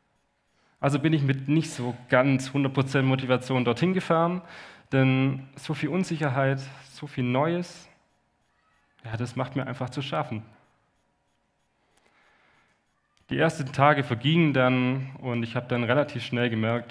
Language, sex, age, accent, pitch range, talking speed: German, male, 30-49, German, 115-140 Hz, 130 wpm